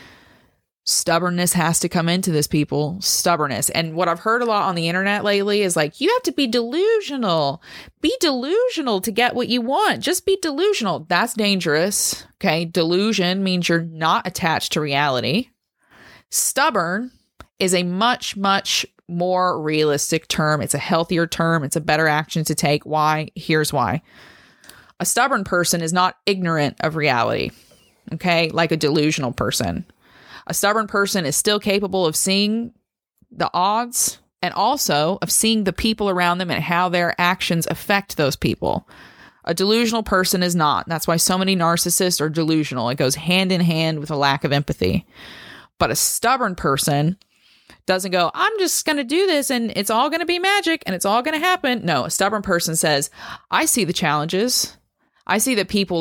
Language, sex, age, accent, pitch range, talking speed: English, female, 30-49, American, 160-210 Hz, 175 wpm